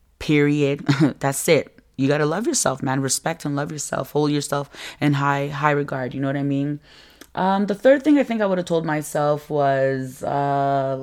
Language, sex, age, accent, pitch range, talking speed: English, female, 20-39, American, 125-150 Hz, 200 wpm